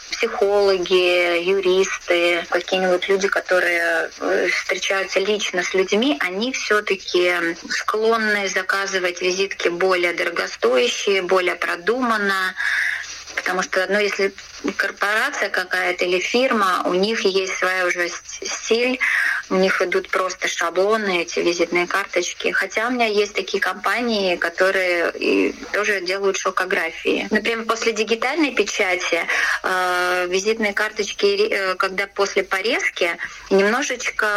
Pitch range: 185-210 Hz